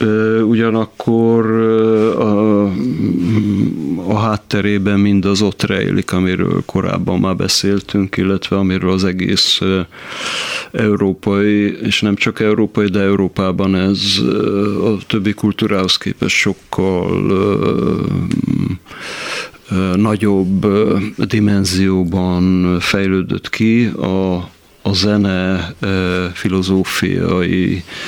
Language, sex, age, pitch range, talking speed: Hungarian, male, 40-59, 95-105 Hz, 80 wpm